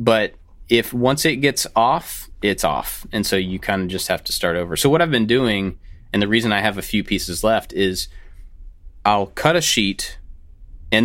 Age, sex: 30-49, male